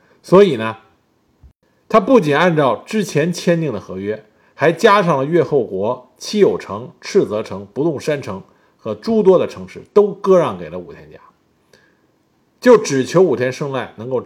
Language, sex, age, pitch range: Chinese, male, 50-69, 130-205 Hz